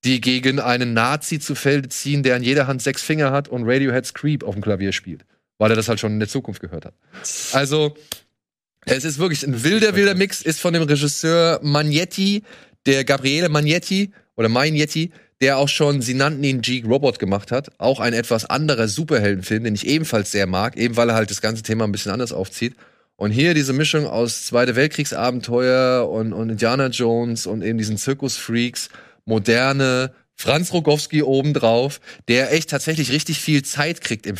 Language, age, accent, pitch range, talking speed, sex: German, 30-49, German, 115-150 Hz, 185 wpm, male